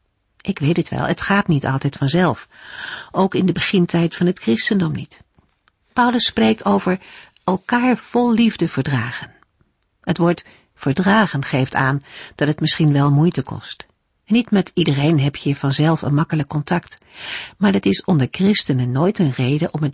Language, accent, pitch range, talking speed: Dutch, Dutch, 140-195 Hz, 165 wpm